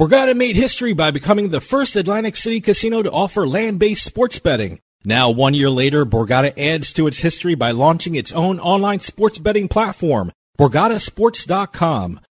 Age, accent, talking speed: 40-59, American, 160 wpm